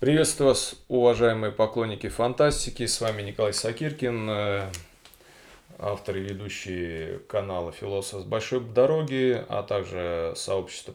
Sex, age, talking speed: male, 20-39, 110 wpm